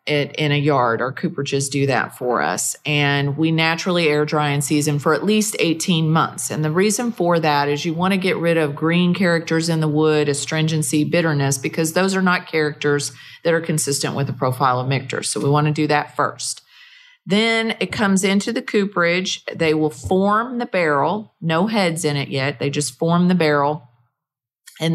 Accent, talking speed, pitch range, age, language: American, 200 wpm, 150-185 Hz, 40-59, English